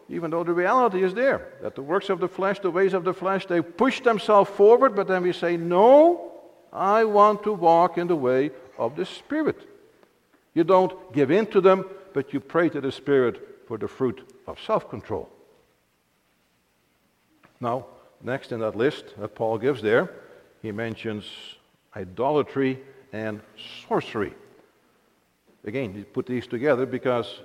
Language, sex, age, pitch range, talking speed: English, male, 60-79, 120-185 Hz, 160 wpm